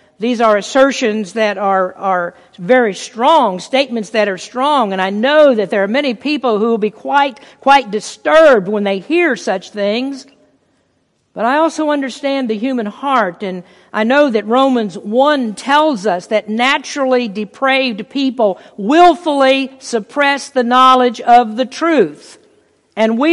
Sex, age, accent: female, 50-69, American